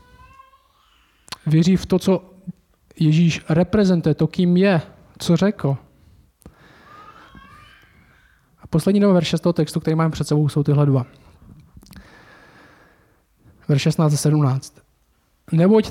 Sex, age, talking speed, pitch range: male, 20-39, 110 wpm, 150-190 Hz